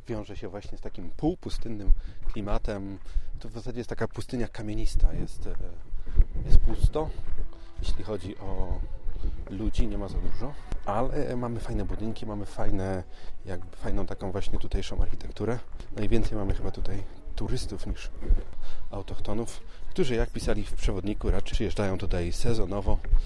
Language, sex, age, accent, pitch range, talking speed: Polish, male, 30-49, native, 85-105 Hz, 140 wpm